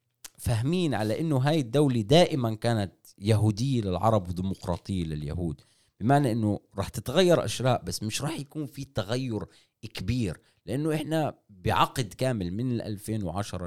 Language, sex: Arabic, male